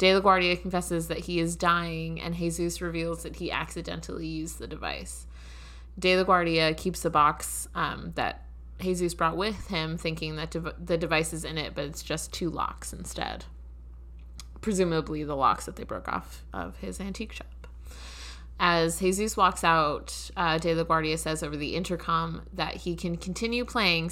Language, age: English, 20-39